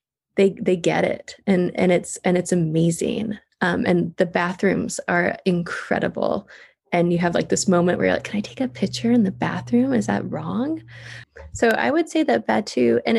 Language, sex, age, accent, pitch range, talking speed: English, female, 20-39, American, 175-220 Hz, 195 wpm